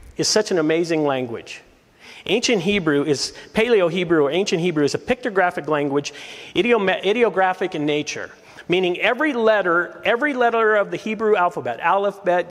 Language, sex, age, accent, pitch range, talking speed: English, male, 40-59, American, 165-225 Hz, 150 wpm